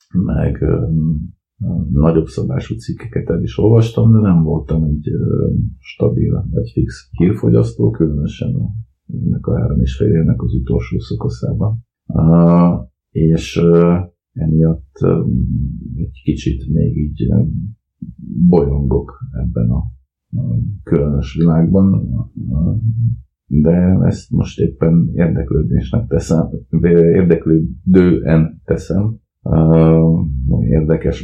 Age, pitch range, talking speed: 50-69, 65-85 Hz, 100 wpm